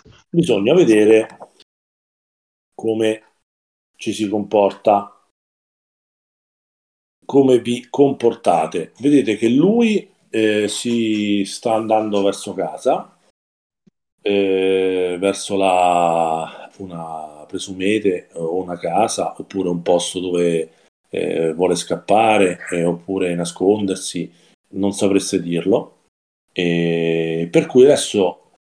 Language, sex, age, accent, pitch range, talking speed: English, male, 40-59, Italian, 90-110 Hz, 90 wpm